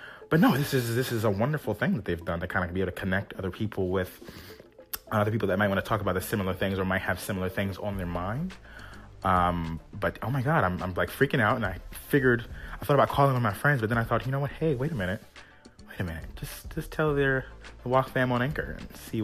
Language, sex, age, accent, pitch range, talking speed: English, male, 30-49, American, 100-135 Hz, 265 wpm